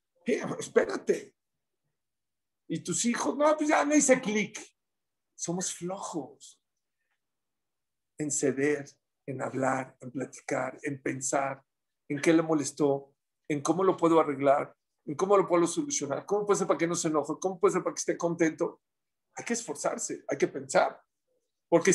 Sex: male